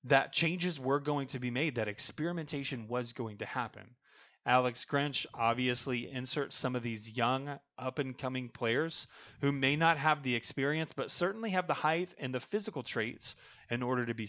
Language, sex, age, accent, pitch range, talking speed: English, male, 30-49, American, 120-145 Hz, 175 wpm